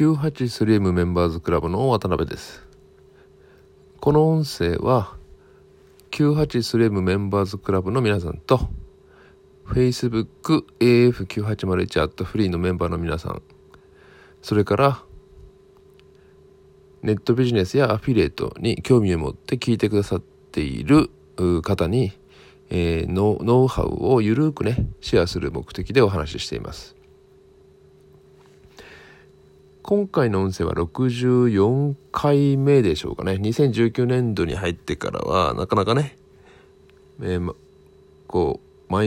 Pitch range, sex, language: 90-130 Hz, male, Japanese